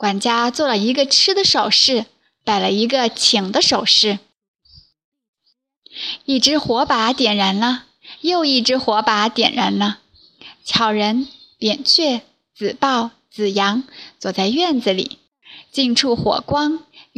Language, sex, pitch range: Chinese, female, 220-285 Hz